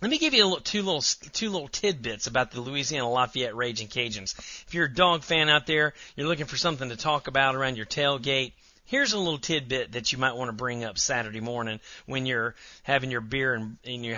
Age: 40-59